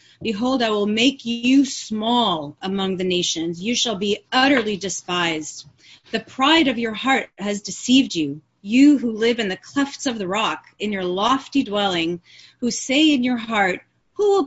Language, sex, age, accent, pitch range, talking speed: English, female, 30-49, American, 195-270 Hz, 175 wpm